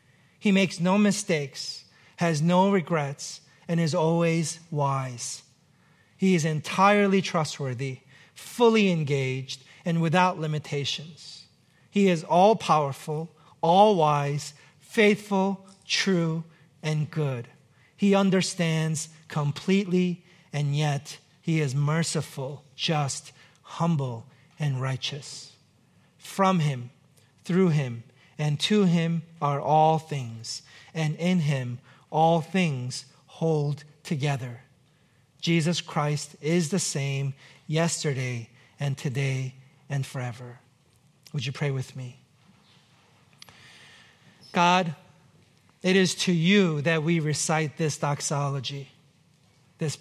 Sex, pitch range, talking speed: male, 140-170 Hz, 100 wpm